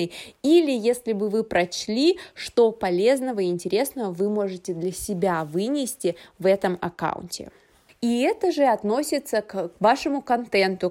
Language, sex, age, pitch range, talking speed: Russian, female, 20-39, 185-235 Hz, 130 wpm